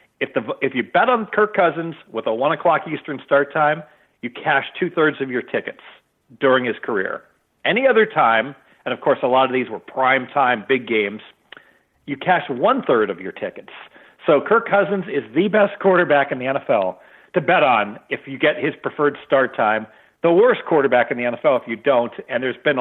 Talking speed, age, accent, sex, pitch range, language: 205 wpm, 50-69, American, male, 125-180 Hz, English